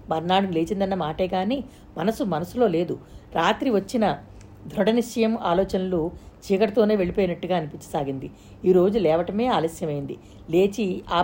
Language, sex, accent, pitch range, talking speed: Telugu, female, native, 170-215 Hz, 100 wpm